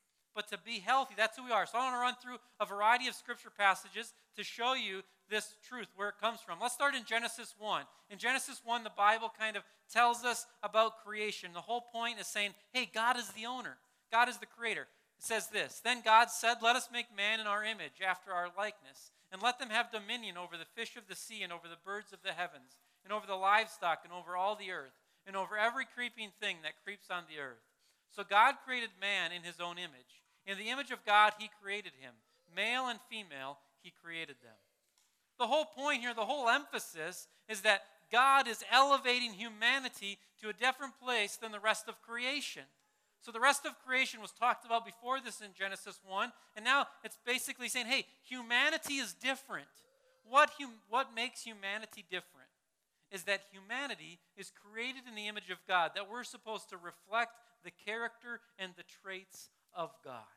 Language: English